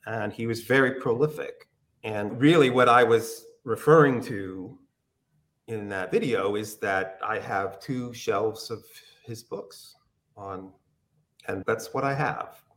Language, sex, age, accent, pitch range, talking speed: English, male, 40-59, American, 110-150 Hz, 140 wpm